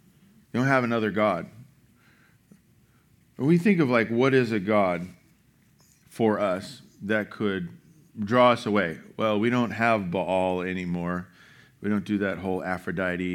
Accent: American